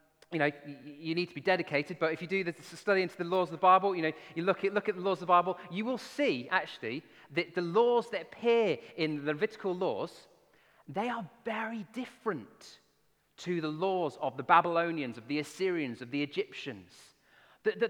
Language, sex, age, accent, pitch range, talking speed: English, male, 30-49, British, 155-210 Hz, 205 wpm